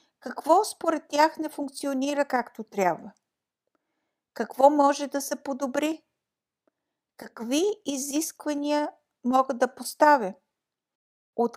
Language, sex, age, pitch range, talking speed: Bulgarian, female, 60-79, 225-285 Hz, 95 wpm